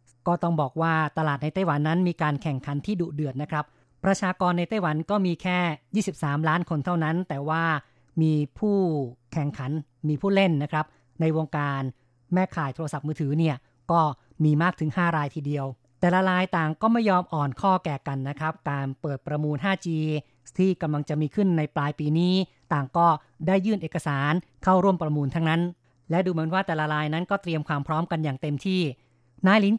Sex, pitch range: female, 145-175 Hz